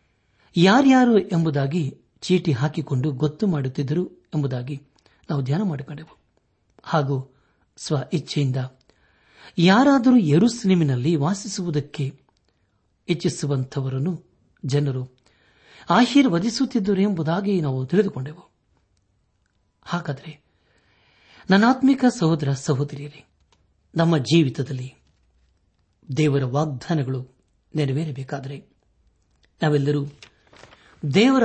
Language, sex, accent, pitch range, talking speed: Kannada, male, native, 100-165 Hz, 60 wpm